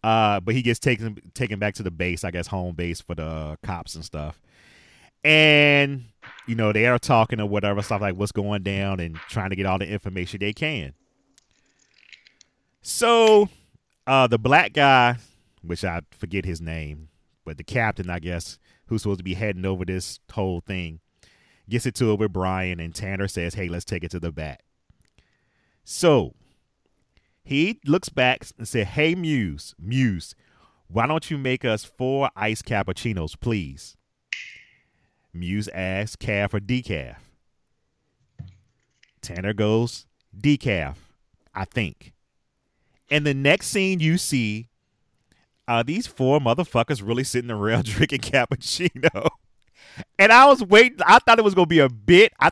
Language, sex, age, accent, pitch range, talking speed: English, male, 30-49, American, 95-130 Hz, 160 wpm